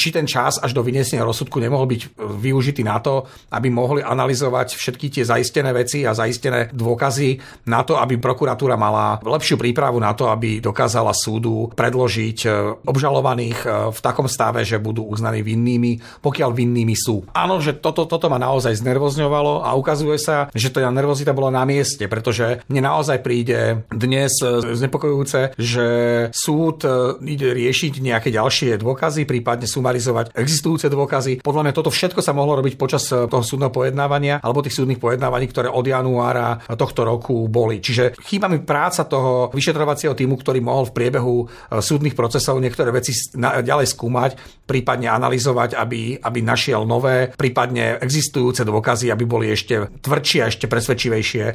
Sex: male